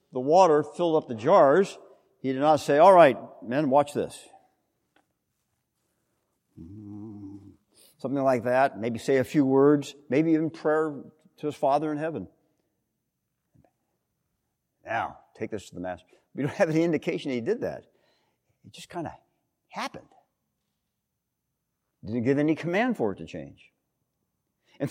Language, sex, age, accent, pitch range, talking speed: English, male, 50-69, American, 120-160 Hz, 140 wpm